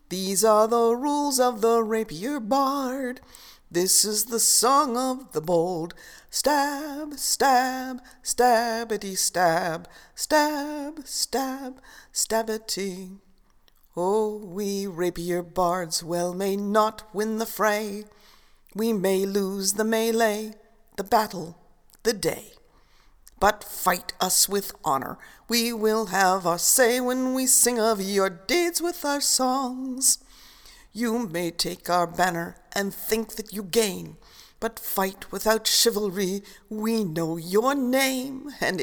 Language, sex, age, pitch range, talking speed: English, female, 60-79, 190-260 Hz, 120 wpm